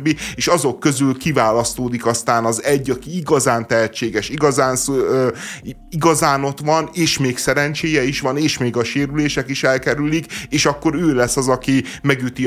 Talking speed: 160 wpm